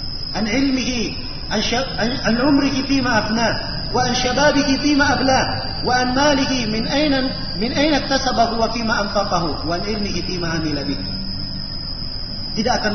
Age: 40-59